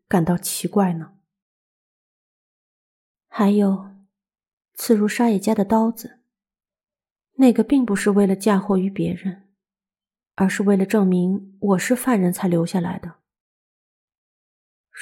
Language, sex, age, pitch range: Chinese, female, 30-49, 175-220 Hz